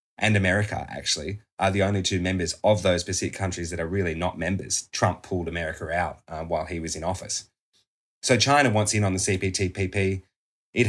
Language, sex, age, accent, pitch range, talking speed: English, male, 20-39, Australian, 90-105 Hz, 195 wpm